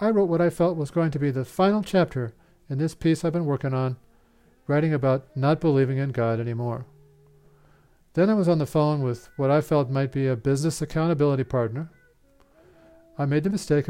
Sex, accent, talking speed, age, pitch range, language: male, American, 200 wpm, 40-59, 130-160 Hz, English